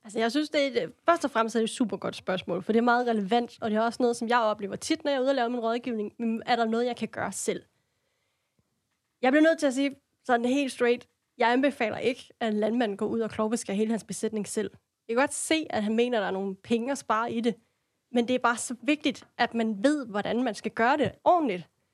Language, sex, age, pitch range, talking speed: Danish, female, 20-39, 220-265 Hz, 265 wpm